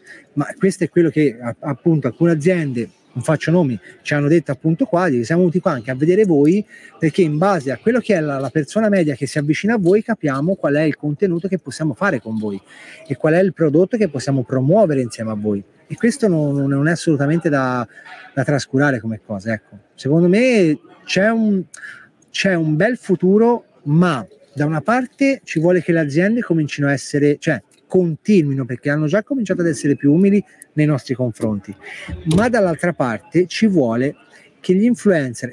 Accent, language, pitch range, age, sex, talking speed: native, Italian, 135-180 Hz, 30-49, male, 185 wpm